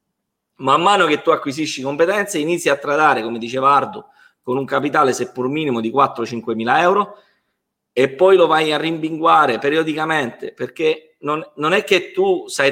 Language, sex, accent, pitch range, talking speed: Italian, male, native, 140-185 Hz, 165 wpm